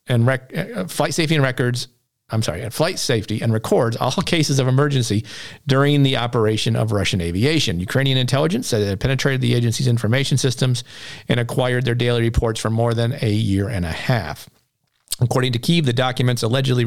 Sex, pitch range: male, 115-145 Hz